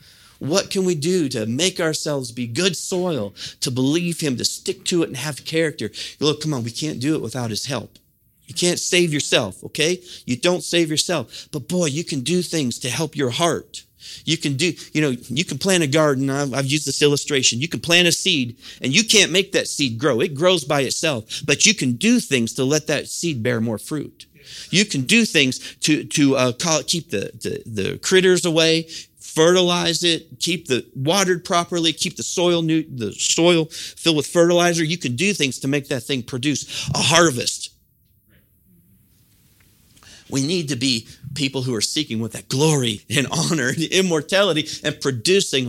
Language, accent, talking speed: English, American, 195 wpm